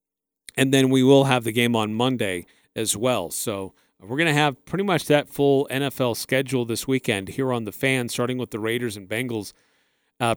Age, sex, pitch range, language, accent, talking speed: 40-59, male, 120-150 Hz, English, American, 205 wpm